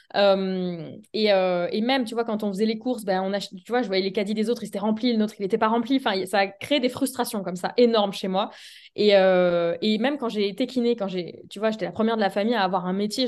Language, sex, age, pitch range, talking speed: French, female, 20-39, 195-245 Hz, 295 wpm